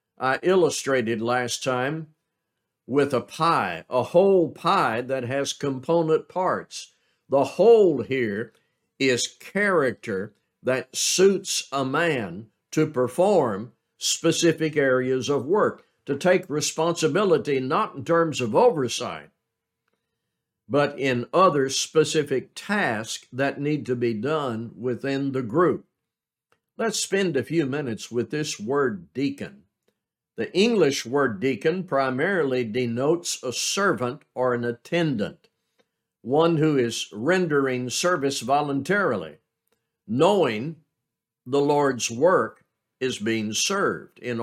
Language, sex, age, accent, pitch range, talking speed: English, male, 60-79, American, 125-165 Hz, 115 wpm